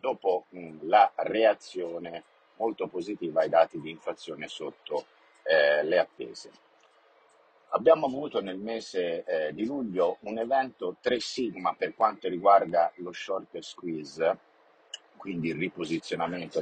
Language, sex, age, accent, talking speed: Italian, male, 50-69, native, 120 wpm